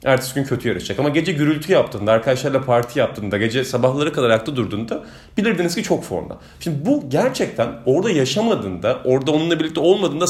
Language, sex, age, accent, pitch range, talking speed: Turkish, male, 40-59, native, 120-175 Hz, 170 wpm